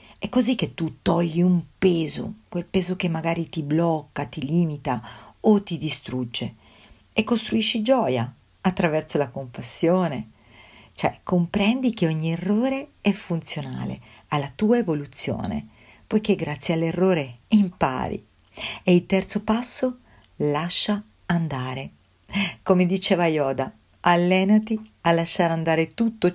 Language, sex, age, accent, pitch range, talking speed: Italian, female, 50-69, native, 145-195 Hz, 120 wpm